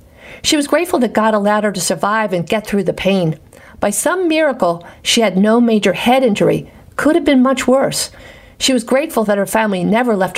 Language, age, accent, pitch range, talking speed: English, 50-69, American, 195-260 Hz, 210 wpm